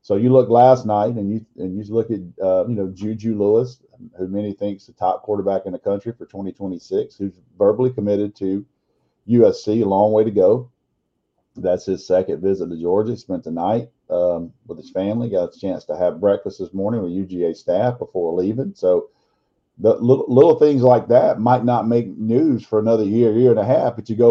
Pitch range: 100-125 Hz